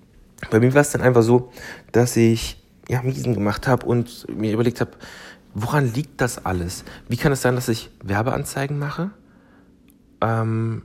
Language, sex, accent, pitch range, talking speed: German, male, German, 105-125 Hz, 165 wpm